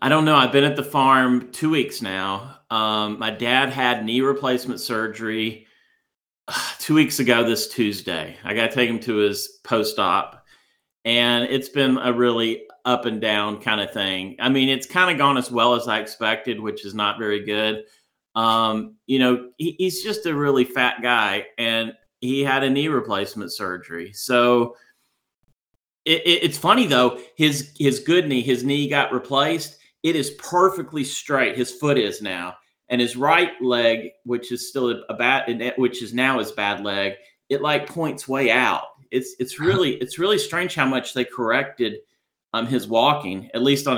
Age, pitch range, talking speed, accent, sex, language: 30-49, 110-140 Hz, 180 wpm, American, male, English